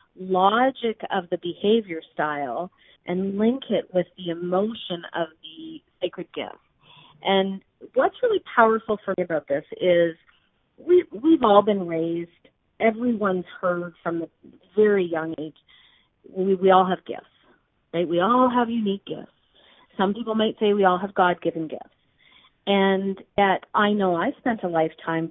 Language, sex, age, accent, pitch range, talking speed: English, female, 40-59, American, 170-225 Hz, 155 wpm